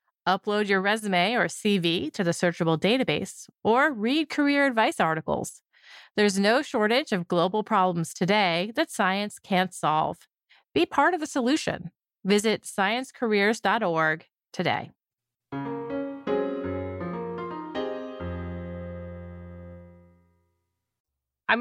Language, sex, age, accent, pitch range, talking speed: English, female, 30-49, American, 170-220 Hz, 95 wpm